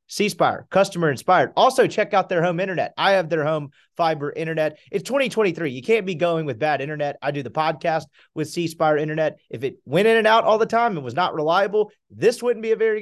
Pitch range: 155-215 Hz